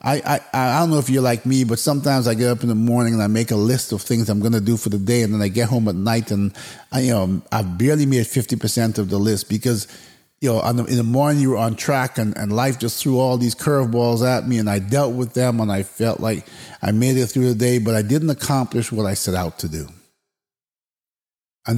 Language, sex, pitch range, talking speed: English, male, 105-130 Hz, 265 wpm